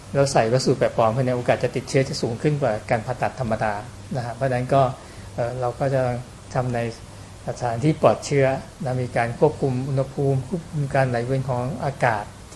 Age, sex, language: 60-79, male, Thai